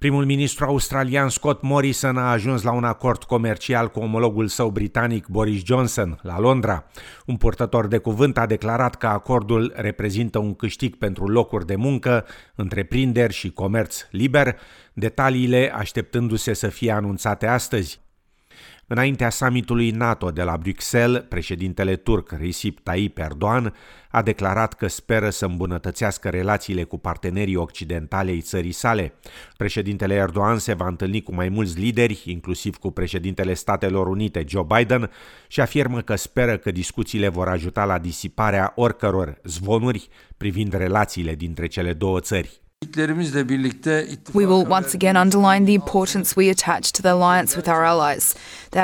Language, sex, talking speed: Romanian, male, 145 wpm